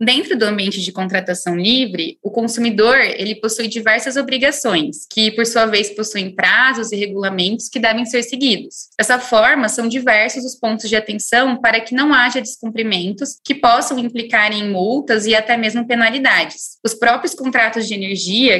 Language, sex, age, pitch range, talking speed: Portuguese, female, 20-39, 210-255 Hz, 160 wpm